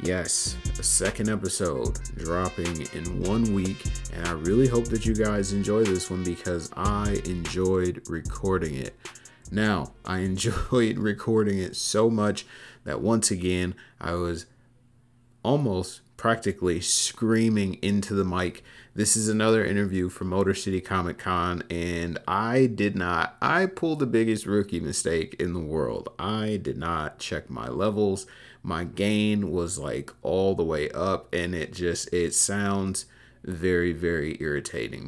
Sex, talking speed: male, 145 wpm